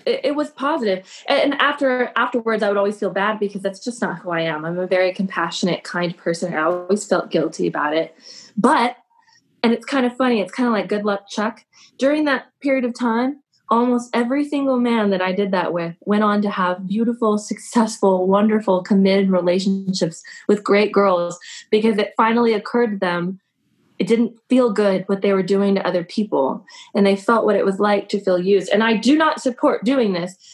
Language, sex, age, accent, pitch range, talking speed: English, female, 20-39, American, 190-240 Hz, 200 wpm